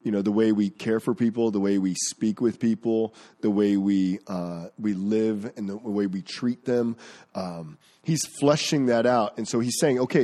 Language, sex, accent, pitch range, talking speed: English, male, American, 100-135 Hz, 210 wpm